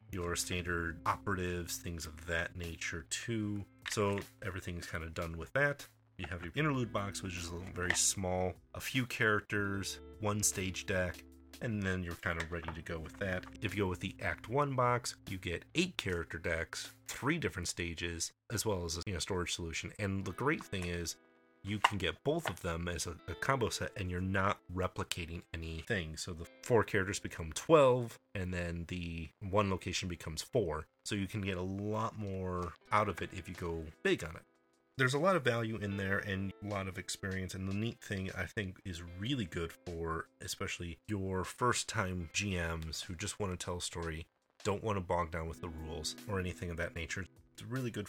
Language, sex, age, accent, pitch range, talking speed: English, male, 30-49, American, 85-105 Hz, 205 wpm